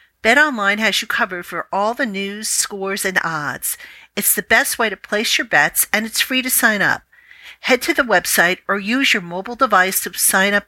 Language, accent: English, American